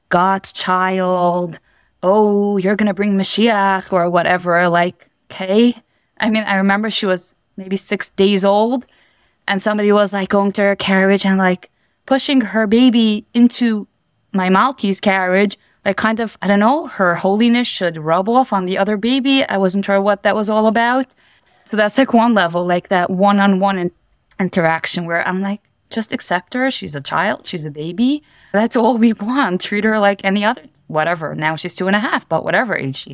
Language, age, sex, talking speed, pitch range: English, 20-39, female, 185 wpm, 175-215 Hz